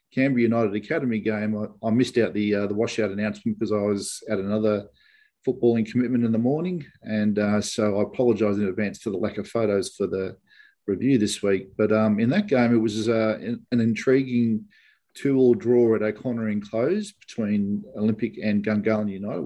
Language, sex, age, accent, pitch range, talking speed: English, male, 50-69, Australian, 105-125 Hz, 185 wpm